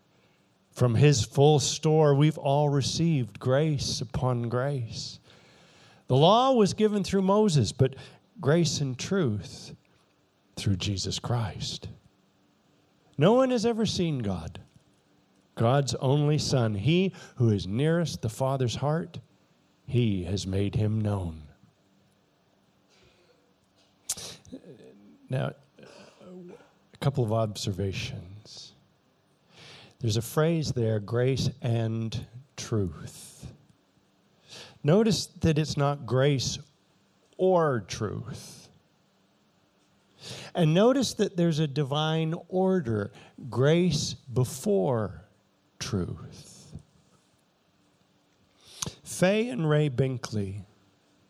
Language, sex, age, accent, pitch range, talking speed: English, male, 50-69, American, 110-155 Hz, 90 wpm